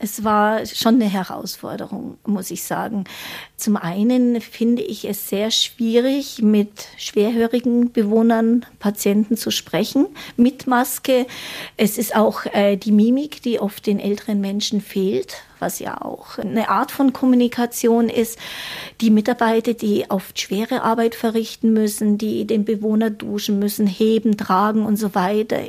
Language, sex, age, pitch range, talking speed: German, female, 50-69, 210-235 Hz, 140 wpm